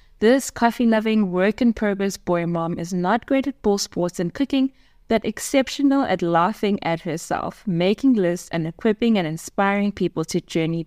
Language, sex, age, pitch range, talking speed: English, female, 20-39, 180-225 Hz, 150 wpm